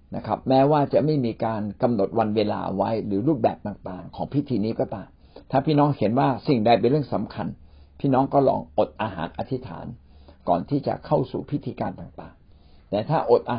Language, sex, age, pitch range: Thai, male, 60-79, 90-140 Hz